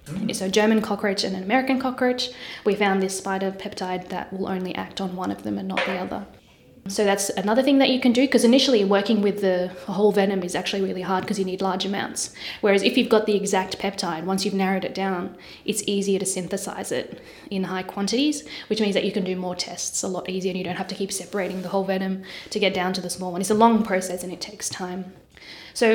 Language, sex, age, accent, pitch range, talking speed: English, female, 10-29, Australian, 185-220 Hz, 240 wpm